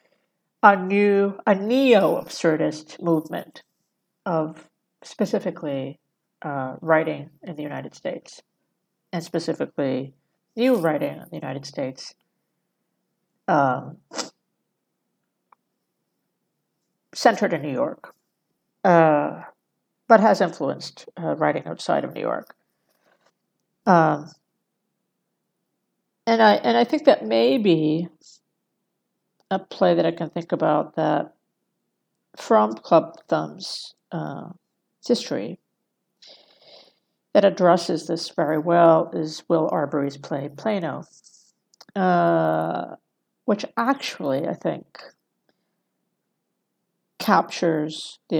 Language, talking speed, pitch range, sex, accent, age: English, 90 wpm, 155-200 Hz, female, American, 60-79